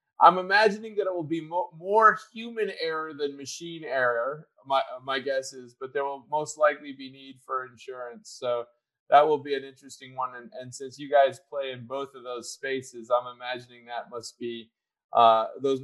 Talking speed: 190 wpm